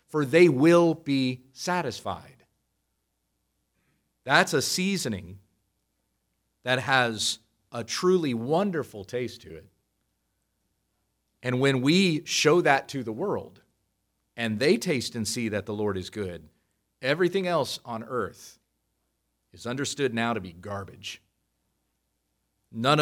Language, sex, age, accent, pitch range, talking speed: English, male, 40-59, American, 105-150 Hz, 115 wpm